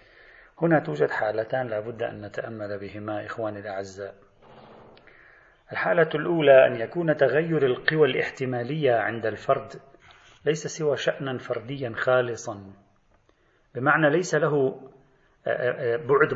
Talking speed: 105 wpm